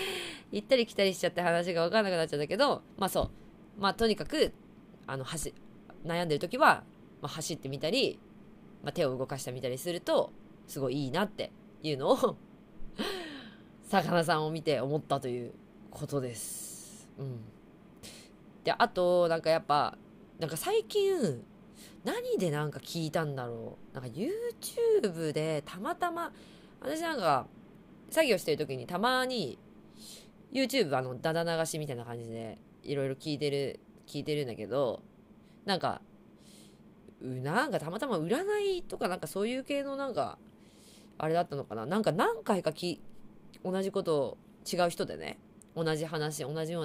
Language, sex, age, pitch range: Japanese, female, 20-39, 145-220 Hz